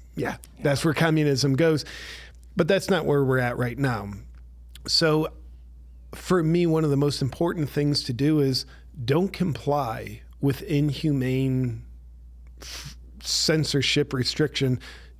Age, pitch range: 40-59, 120-145 Hz